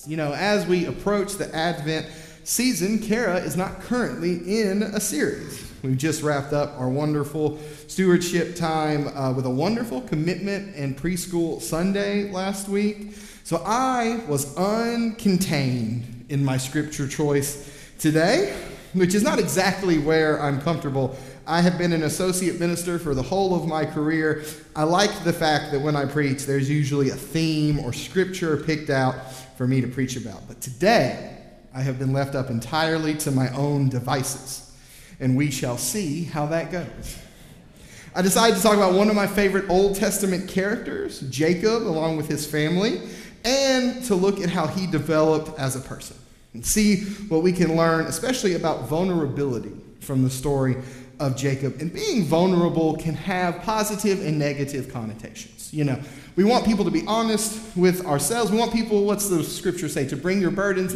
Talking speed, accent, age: 170 wpm, American, 30-49